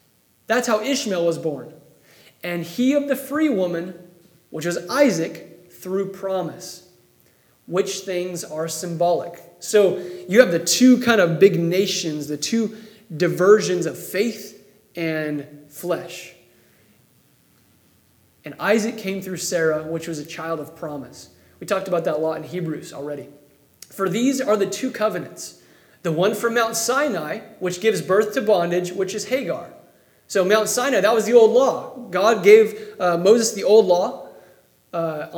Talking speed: 155 wpm